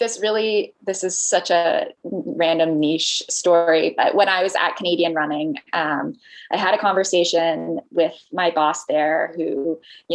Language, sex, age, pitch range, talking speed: English, female, 20-39, 160-195 Hz, 160 wpm